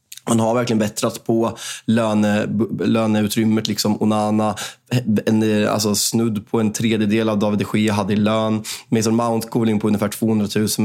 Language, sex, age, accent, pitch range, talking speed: Swedish, male, 20-39, native, 105-115 Hz, 160 wpm